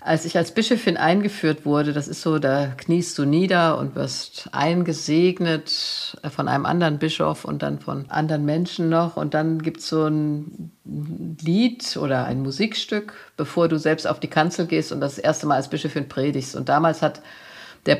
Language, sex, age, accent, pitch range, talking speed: German, female, 50-69, German, 155-185 Hz, 180 wpm